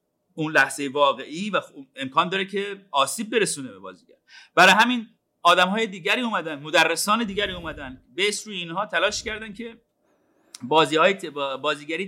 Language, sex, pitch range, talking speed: Persian, male, 165-230 Hz, 135 wpm